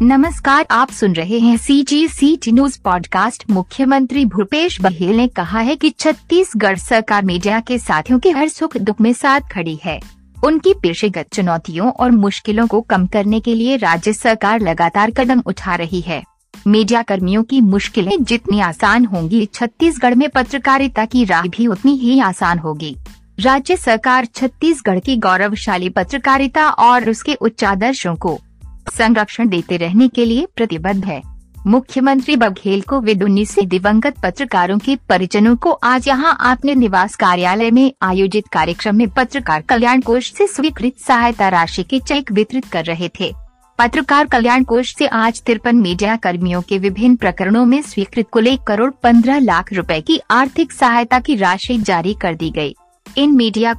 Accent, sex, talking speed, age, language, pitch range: native, female, 160 wpm, 50-69, Hindi, 195-260 Hz